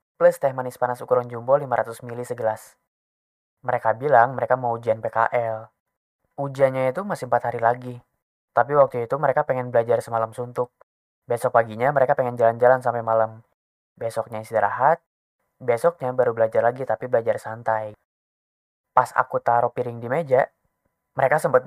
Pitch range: 115-130 Hz